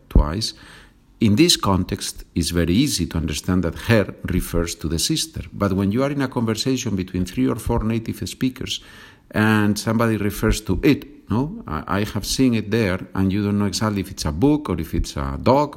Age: 50-69